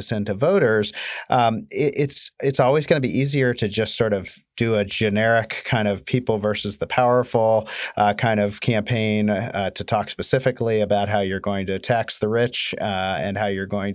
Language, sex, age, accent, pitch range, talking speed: English, male, 40-59, American, 100-115 Hz, 195 wpm